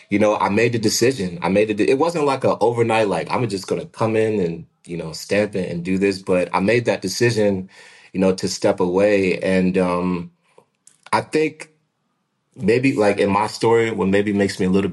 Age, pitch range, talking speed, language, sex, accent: 30-49, 95-120 Hz, 220 wpm, English, male, American